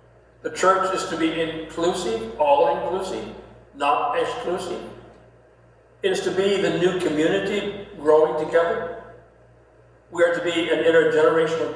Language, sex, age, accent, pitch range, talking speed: English, male, 60-79, American, 145-190 Hz, 120 wpm